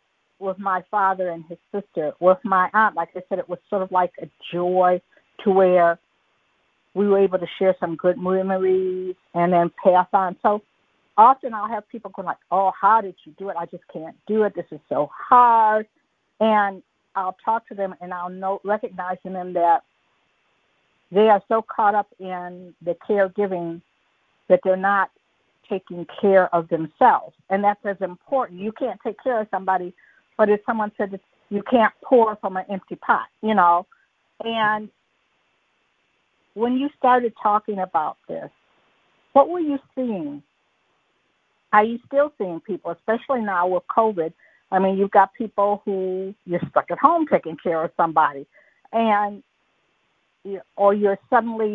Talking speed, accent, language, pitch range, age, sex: 165 wpm, American, English, 180-215 Hz, 50-69, female